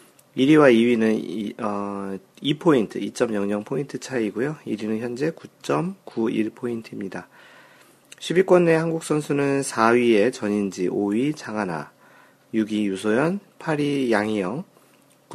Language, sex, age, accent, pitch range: Korean, male, 40-59, native, 100-135 Hz